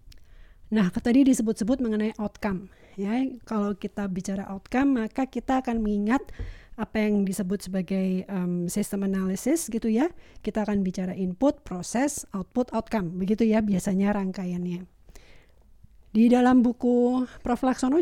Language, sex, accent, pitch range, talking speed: Indonesian, female, native, 195-240 Hz, 130 wpm